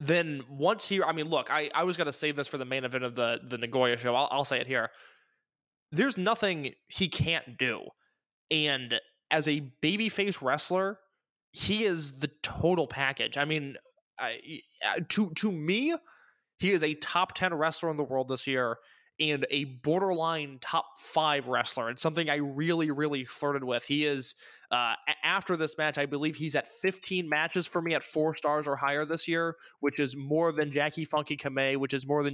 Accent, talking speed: American, 190 wpm